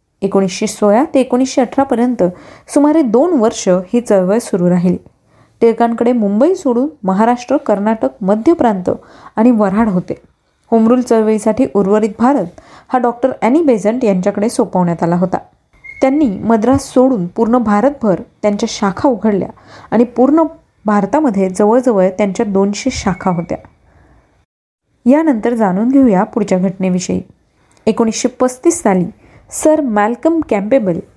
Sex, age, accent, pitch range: female, 30-49, native, 200-260 Hz